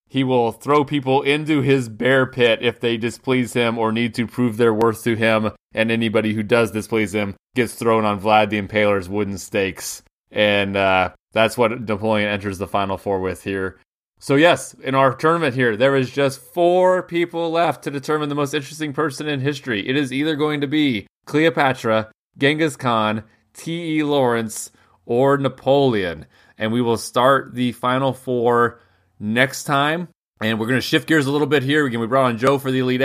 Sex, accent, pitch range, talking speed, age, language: male, American, 110-140 Hz, 190 wpm, 30-49, English